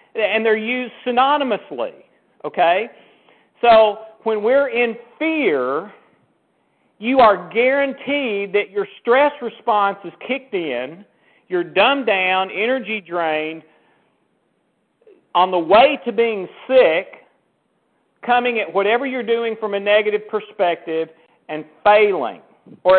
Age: 50-69